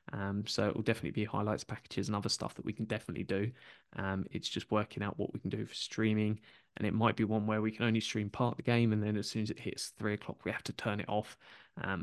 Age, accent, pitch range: 20-39, British, 105-120 Hz